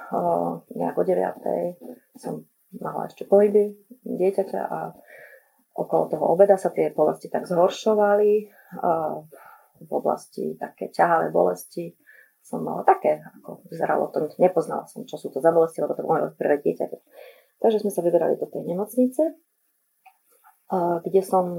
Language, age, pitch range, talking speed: Slovak, 30-49, 170-230 Hz, 135 wpm